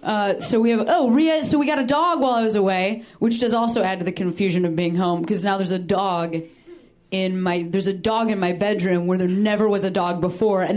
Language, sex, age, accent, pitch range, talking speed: English, female, 20-39, American, 190-255 Hz, 255 wpm